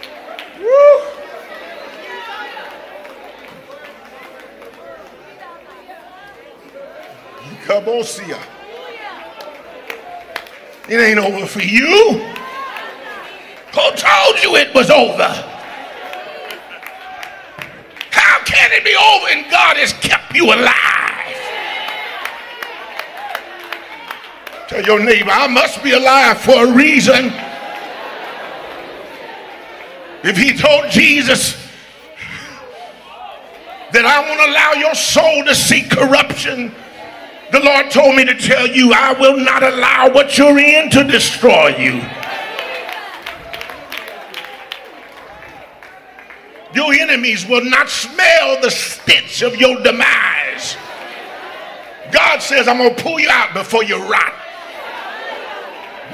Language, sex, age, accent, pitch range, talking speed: English, male, 50-69, American, 245-310 Hz, 95 wpm